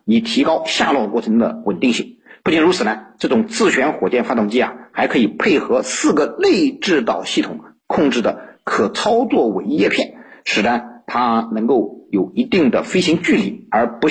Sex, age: male, 50-69